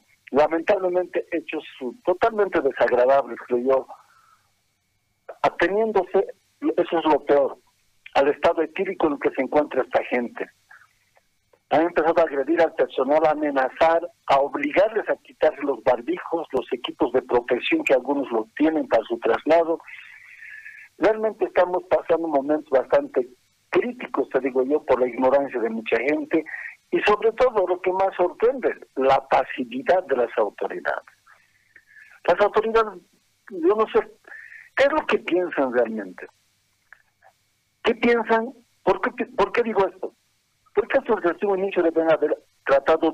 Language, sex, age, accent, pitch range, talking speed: Spanish, male, 50-69, Mexican, 150-245 Hz, 140 wpm